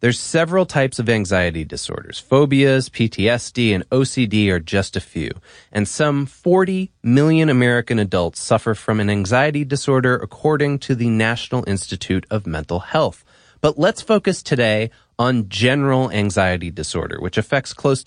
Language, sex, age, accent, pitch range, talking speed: English, male, 30-49, American, 110-165 Hz, 145 wpm